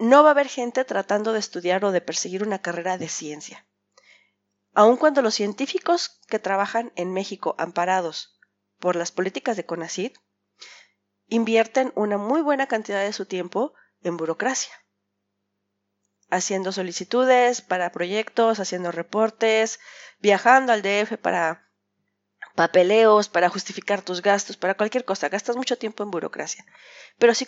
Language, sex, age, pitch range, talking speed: Spanish, female, 40-59, 180-245 Hz, 140 wpm